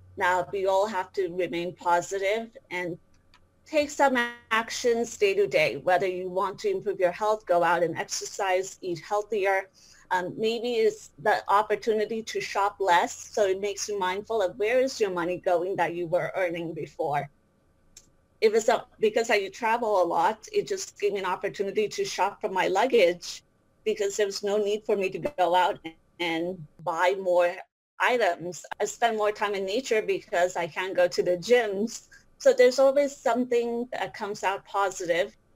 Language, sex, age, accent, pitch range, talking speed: English, female, 30-49, American, 180-225 Hz, 180 wpm